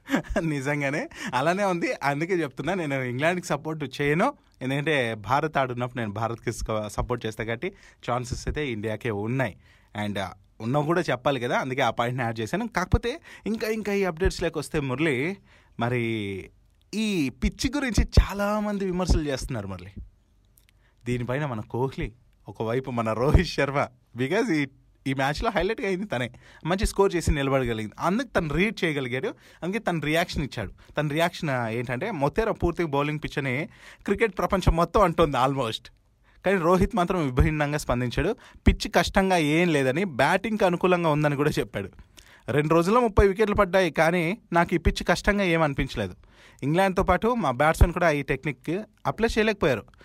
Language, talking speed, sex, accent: Telugu, 140 wpm, male, native